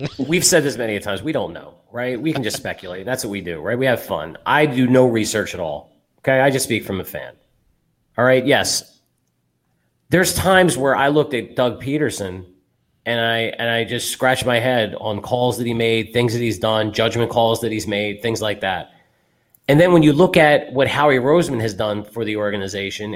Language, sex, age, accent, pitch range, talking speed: English, male, 30-49, American, 110-140 Hz, 220 wpm